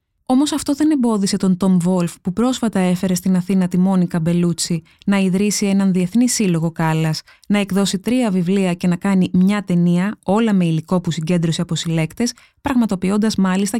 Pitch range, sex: 165-225 Hz, female